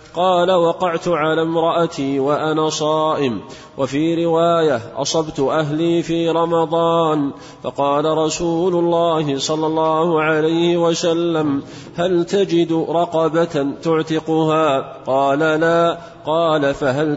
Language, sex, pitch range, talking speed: Arabic, male, 155-170 Hz, 95 wpm